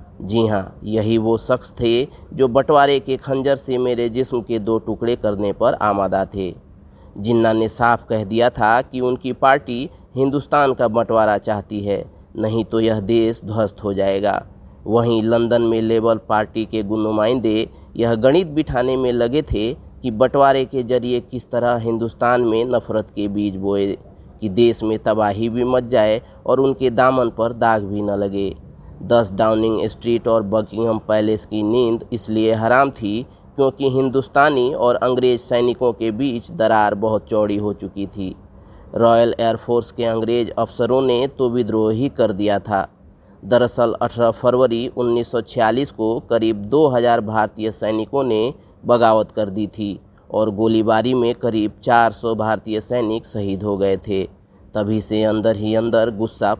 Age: 30-49